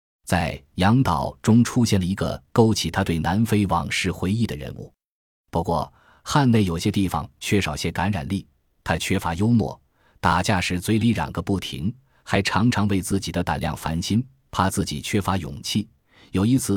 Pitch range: 85-115 Hz